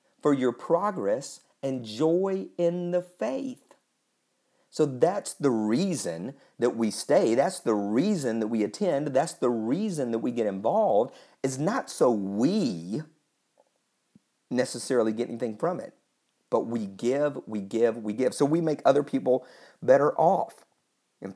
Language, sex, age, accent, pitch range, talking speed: English, male, 50-69, American, 120-170 Hz, 145 wpm